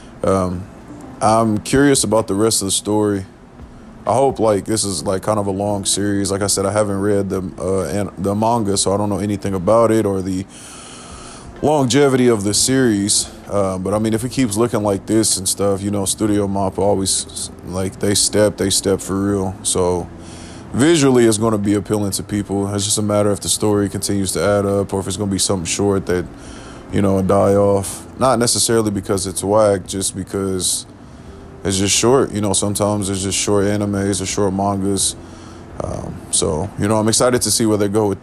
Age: 20-39